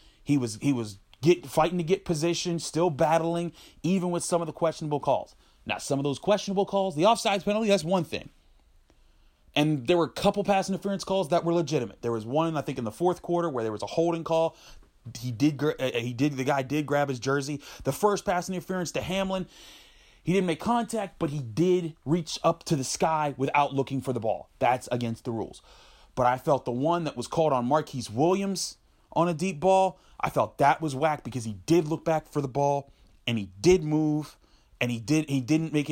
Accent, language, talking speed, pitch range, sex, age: American, English, 220 wpm, 125-170 Hz, male, 30-49